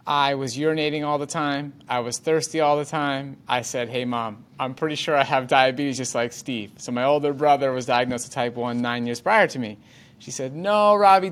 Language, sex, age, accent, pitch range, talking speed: English, male, 30-49, American, 120-165 Hz, 230 wpm